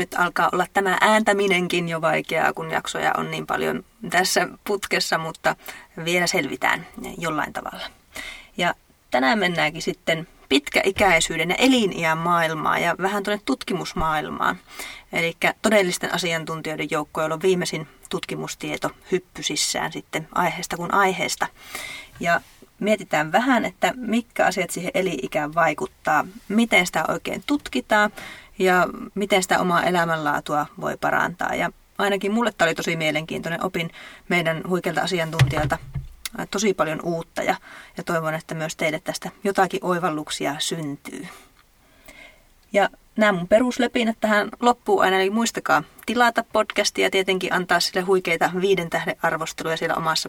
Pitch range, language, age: 165-205 Hz, Finnish, 30-49